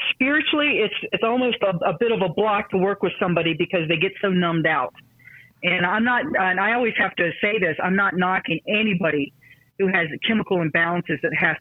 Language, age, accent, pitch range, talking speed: English, 50-69, American, 165-215 Hz, 205 wpm